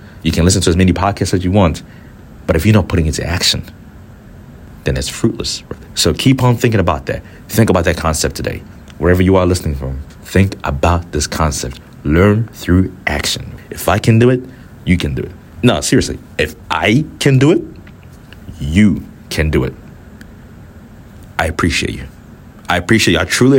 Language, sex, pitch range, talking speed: English, male, 80-105 Hz, 180 wpm